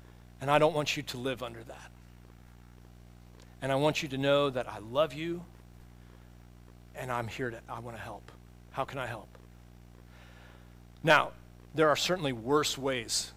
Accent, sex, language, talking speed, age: American, male, English, 165 wpm, 40-59